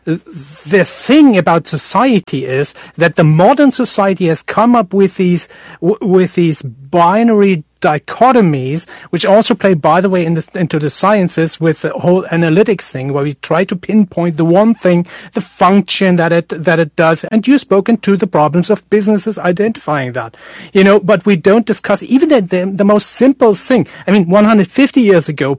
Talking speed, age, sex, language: 185 wpm, 40-59, male, English